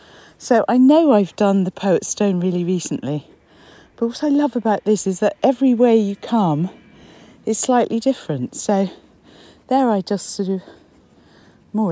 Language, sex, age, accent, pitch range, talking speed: English, female, 50-69, British, 155-220 Hz, 160 wpm